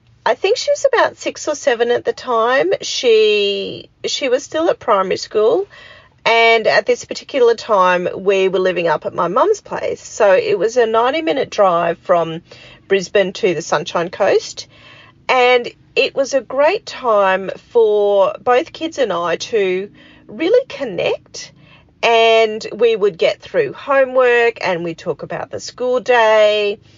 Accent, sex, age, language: Australian, female, 40-59, English